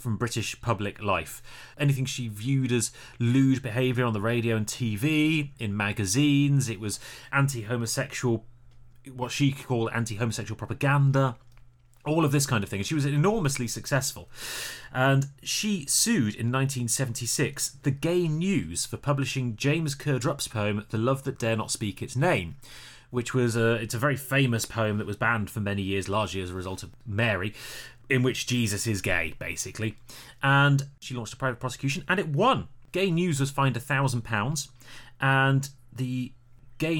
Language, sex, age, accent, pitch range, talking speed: English, male, 30-49, British, 115-140 Hz, 160 wpm